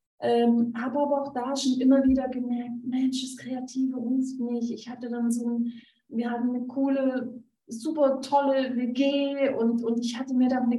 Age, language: 30-49, German